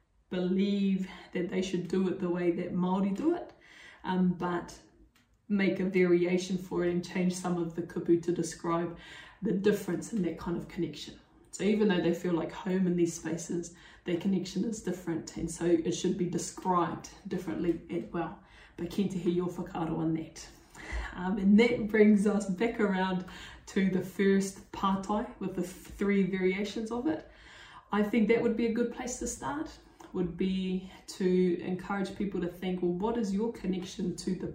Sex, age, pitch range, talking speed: female, 20-39, 170-190 Hz, 185 wpm